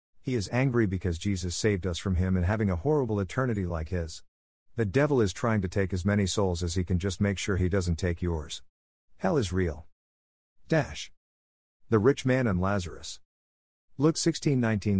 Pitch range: 85-120 Hz